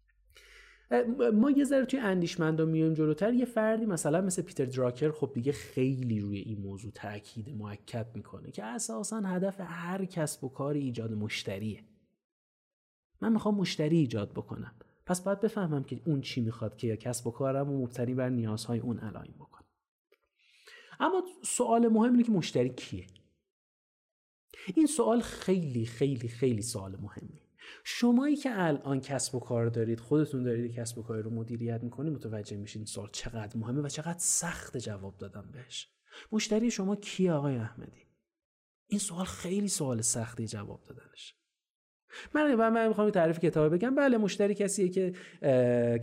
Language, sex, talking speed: Persian, male, 155 wpm